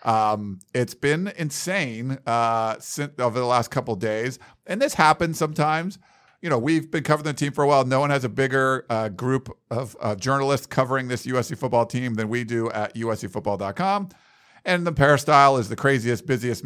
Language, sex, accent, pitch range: English, male, American, 115-145 Hz